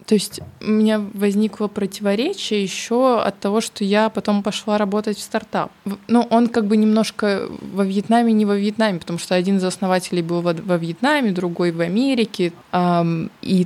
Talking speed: 175 wpm